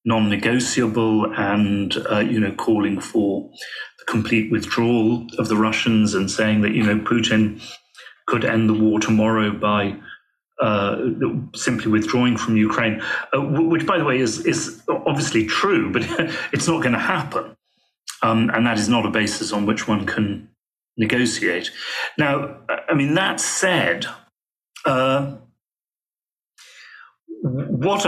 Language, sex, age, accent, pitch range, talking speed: English, male, 40-59, British, 110-120 Hz, 140 wpm